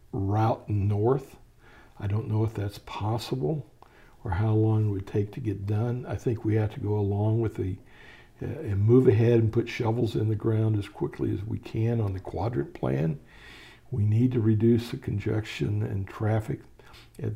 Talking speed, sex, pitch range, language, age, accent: 185 wpm, male, 105-120 Hz, English, 60-79, American